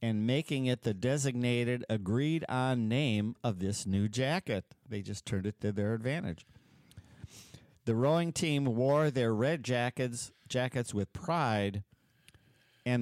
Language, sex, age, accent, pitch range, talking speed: English, male, 50-69, American, 105-130 Hz, 135 wpm